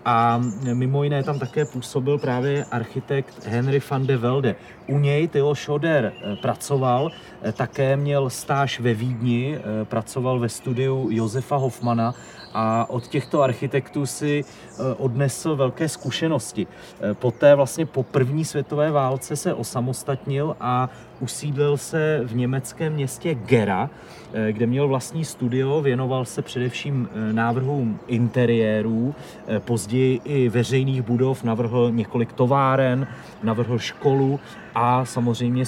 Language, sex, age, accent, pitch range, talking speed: Czech, male, 30-49, native, 120-145 Hz, 120 wpm